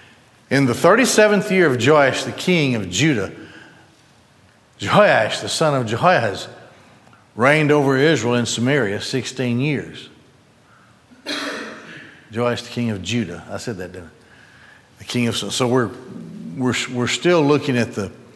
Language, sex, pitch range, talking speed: English, male, 120-175 Hz, 145 wpm